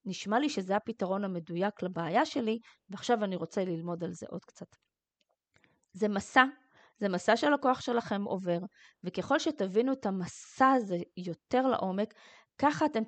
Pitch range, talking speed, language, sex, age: 190-255 Hz, 145 wpm, Hebrew, female, 20-39